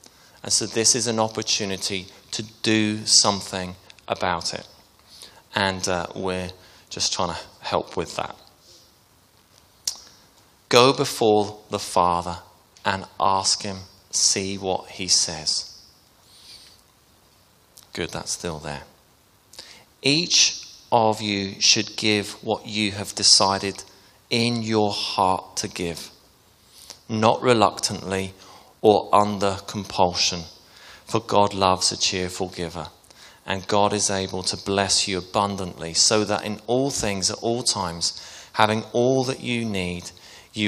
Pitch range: 95-110 Hz